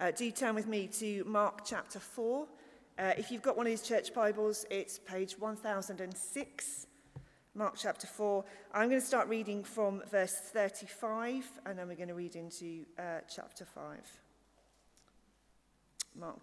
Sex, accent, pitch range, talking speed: female, British, 195-275 Hz, 155 wpm